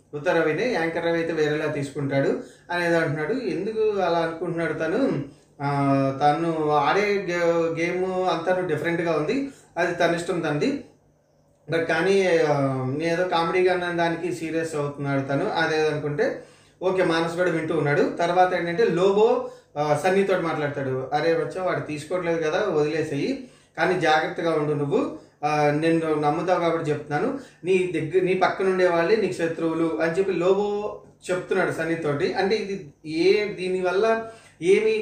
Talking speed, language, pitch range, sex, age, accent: 125 wpm, Telugu, 155-185 Hz, male, 30-49, native